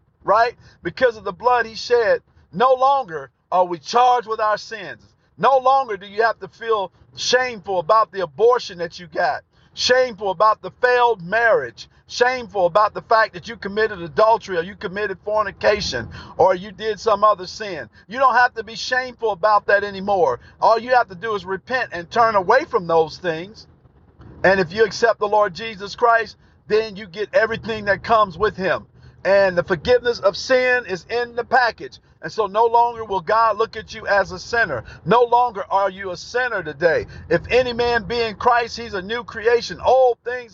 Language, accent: English, American